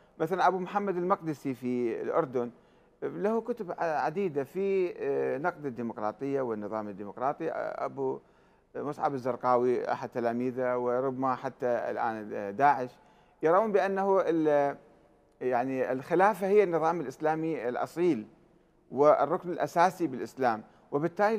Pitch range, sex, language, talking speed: 135-190 Hz, male, Arabic, 100 wpm